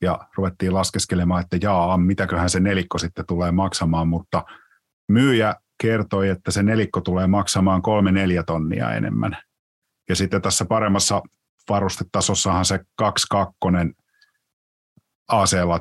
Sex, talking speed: male, 120 wpm